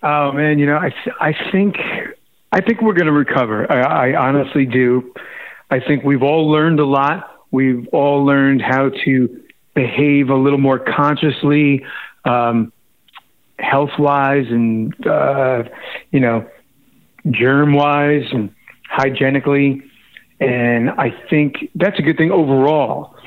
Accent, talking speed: American, 135 wpm